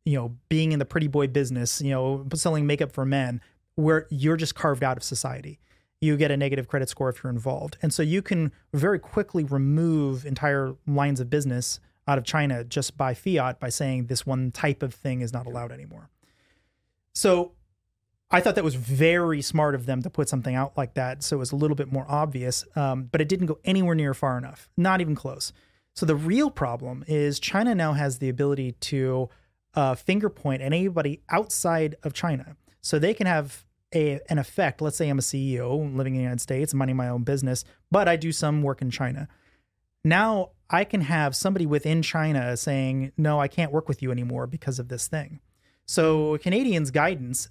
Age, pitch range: 30-49, 130-155 Hz